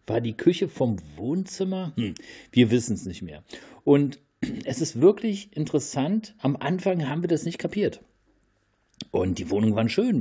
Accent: German